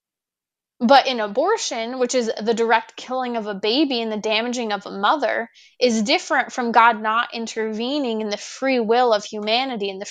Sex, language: female, English